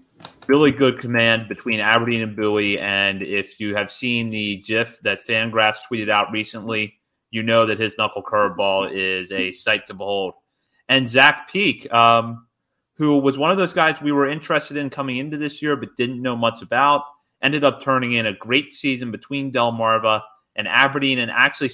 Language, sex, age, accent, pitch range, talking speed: English, male, 30-49, American, 100-130 Hz, 180 wpm